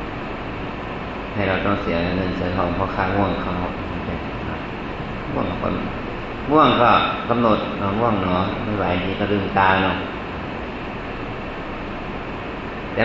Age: 30-49